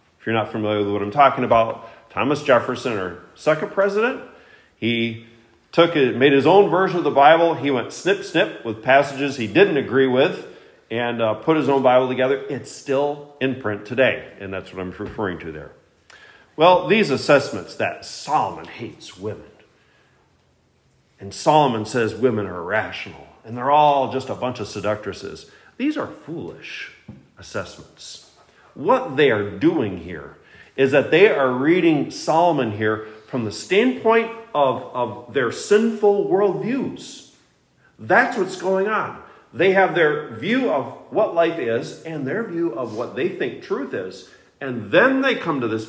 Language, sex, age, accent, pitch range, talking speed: English, male, 40-59, American, 110-175 Hz, 160 wpm